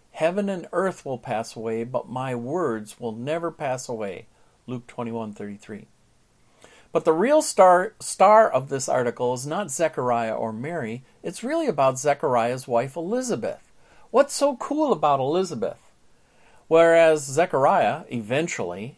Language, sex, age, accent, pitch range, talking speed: English, male, 50-69, American, 120-195 Hz, 135 wpm